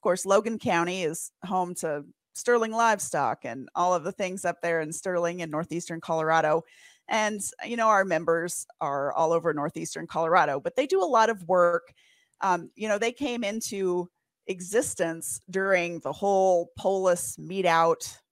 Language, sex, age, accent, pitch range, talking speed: English, female, 30-49, American, 165-205 Hz, 165 wpm